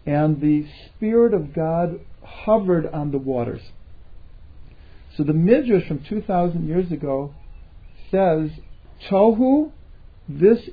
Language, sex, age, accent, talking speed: English, male, 50-69, American, 105 wpm